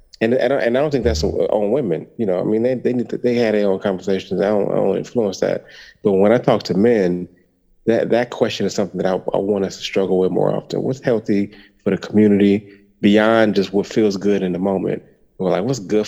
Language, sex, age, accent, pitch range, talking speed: English, male, 30-49, American, 95-120 Hz, 245 wpm